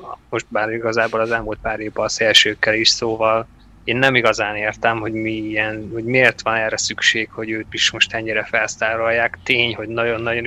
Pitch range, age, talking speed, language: 110-120 Hz, 20-39, 185 wpm, Hungarian